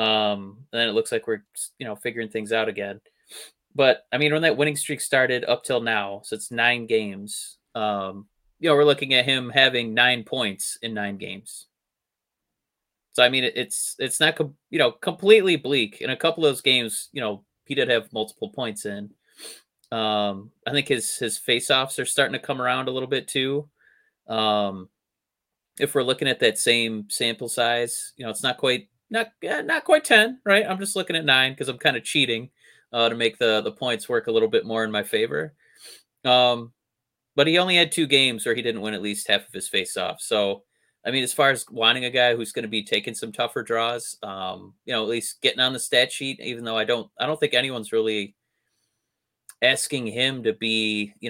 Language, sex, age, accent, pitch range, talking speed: English, male, 20-39, American, 110-145 Hz, 215 wpm